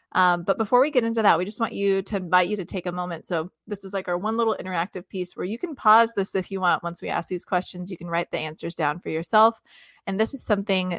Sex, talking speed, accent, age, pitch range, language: female, 285 wpm, American, 20-39, 170-205 Hz, English